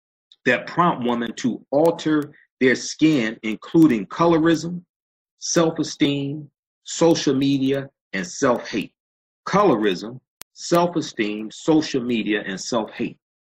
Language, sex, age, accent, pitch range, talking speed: English, male, 40-59, American, 100-140 Hz, 90 wpm